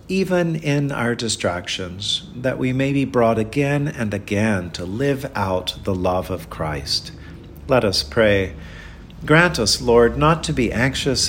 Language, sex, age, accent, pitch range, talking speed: English, male, 50-69, American, 90-130 Hz, 155 wpm